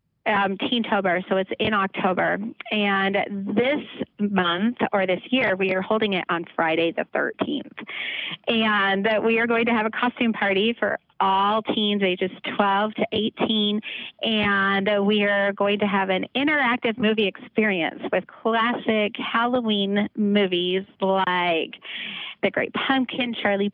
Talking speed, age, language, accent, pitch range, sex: 140 wpm, 30-49, English, American, 195-225 Hz, female